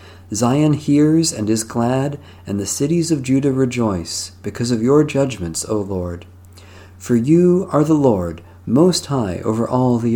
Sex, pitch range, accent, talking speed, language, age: male, 95-135 Hz, American, 160 wpm, English, 50-69